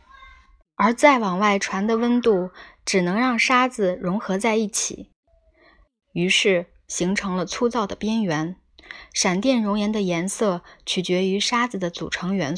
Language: Chinese